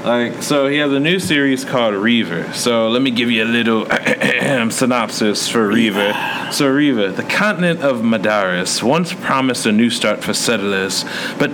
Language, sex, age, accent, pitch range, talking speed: English, male, 30-49, American, 110-140 Hz, 170 wpm